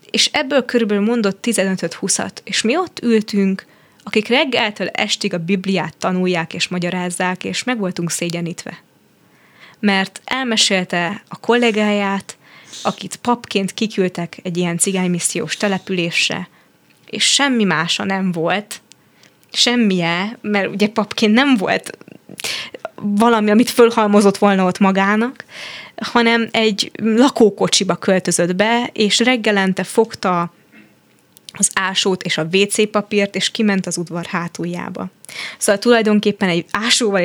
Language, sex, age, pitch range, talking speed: Hungarian, female, 20-39, 180-220 Hz, 115 wpm